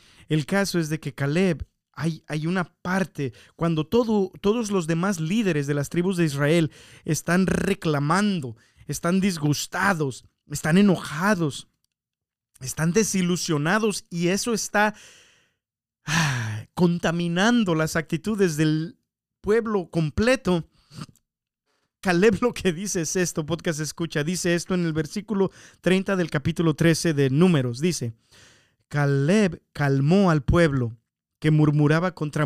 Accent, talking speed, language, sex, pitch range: Mexican, 120 wpm, Spanish, male, 120-180 Hz